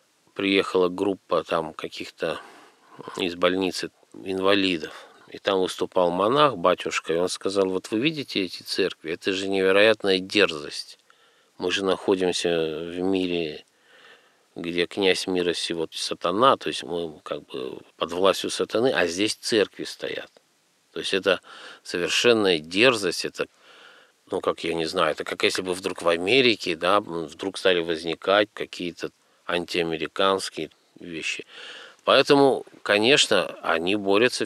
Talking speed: 130 wpm